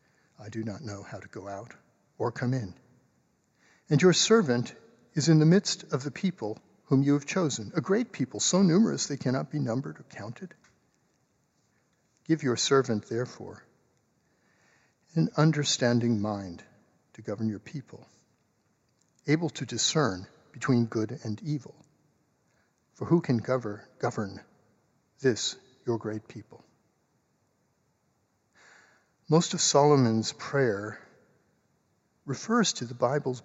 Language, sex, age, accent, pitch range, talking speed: English, male, 60-79, American, 115-150 Hz, 125 wpm